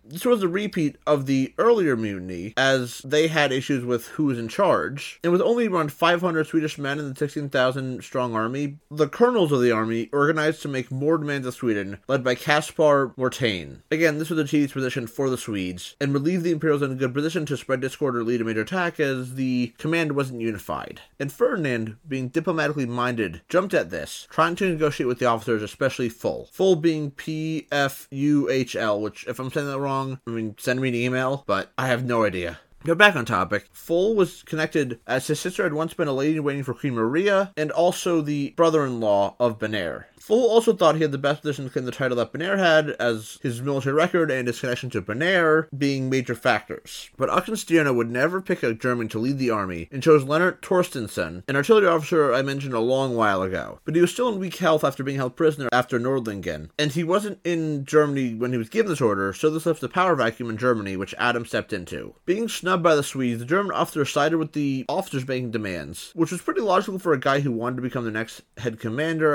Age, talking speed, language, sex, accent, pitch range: 30-49, 220 wpm, English, male, American, 120-160 Hz